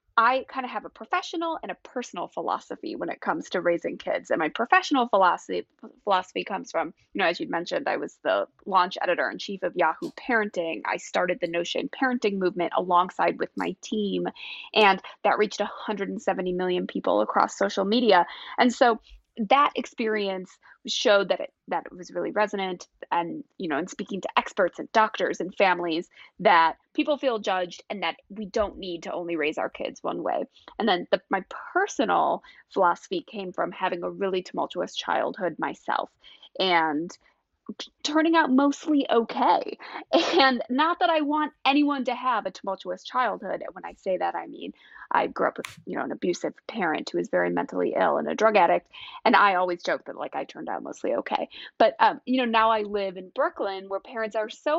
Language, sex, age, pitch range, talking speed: English, female, 20-39, 185-270 Hz, 190 wpm